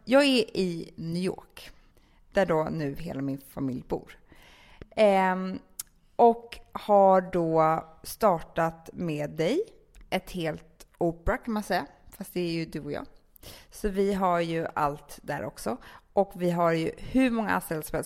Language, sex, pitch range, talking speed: English, female, 165-200 Hz, 155 wpm